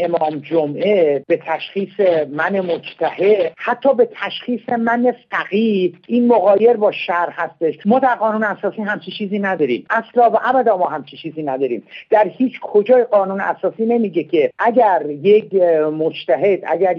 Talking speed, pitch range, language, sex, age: 140 wpm, 175-230 Hz, Persian, male, 50-69